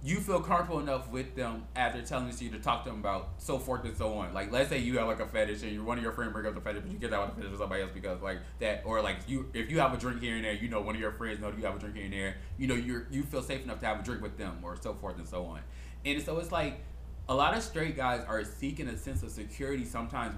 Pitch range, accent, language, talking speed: 105-150 Hz, American, English, 325 wpm